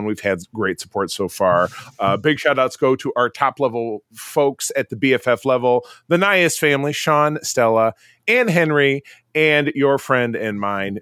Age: 30-49